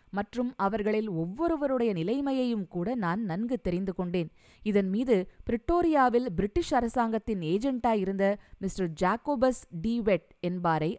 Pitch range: 185-245 Hz